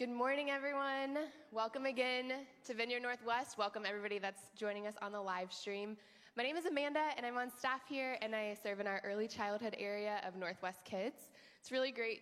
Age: 20-39